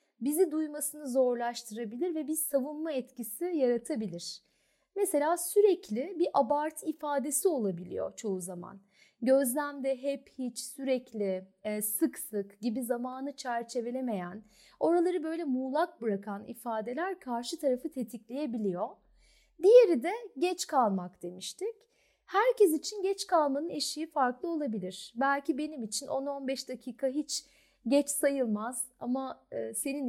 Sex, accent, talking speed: female, native, 110 wpm